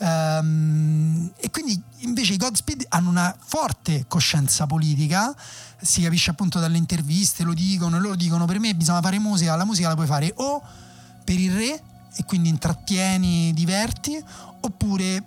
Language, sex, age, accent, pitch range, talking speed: Italian, male, 30-49, native, 155-195 Hz, 155 wpm